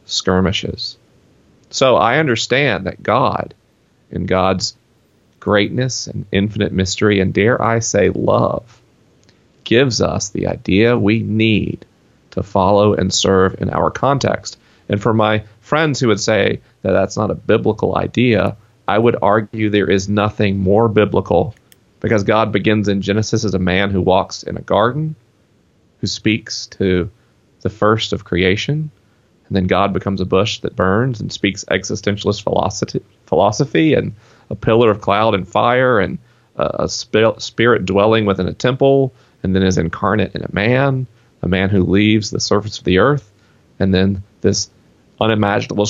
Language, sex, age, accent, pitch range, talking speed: English, male, 40-59, American, 95-110 Hz, 150 wpm